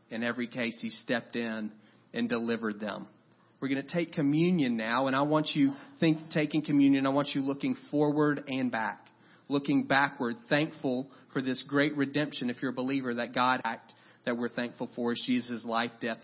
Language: English